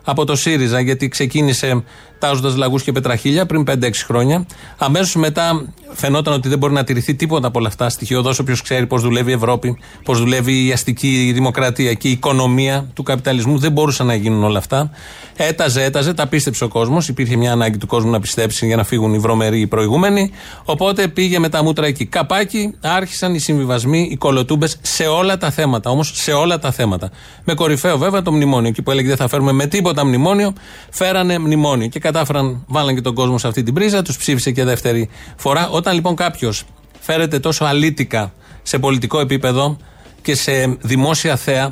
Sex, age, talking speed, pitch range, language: male, 30-49, 190 wpm, 125-165 Hz, Greek